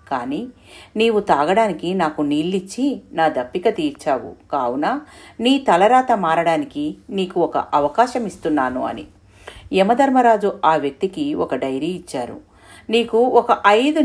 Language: Telugu